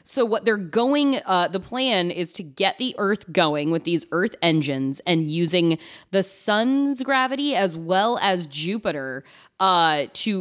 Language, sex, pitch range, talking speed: English, female, 160-210 Hz, 160 wpm